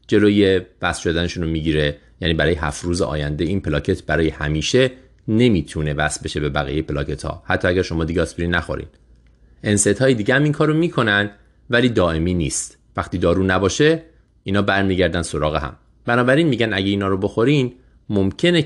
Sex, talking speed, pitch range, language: male, 155 wpm, 80-110 Hz, Persian